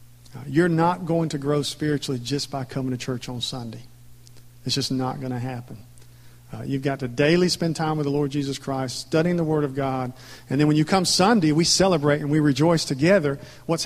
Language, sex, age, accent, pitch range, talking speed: English, male, 50-69, American, 120-145 Hz, 210 wpm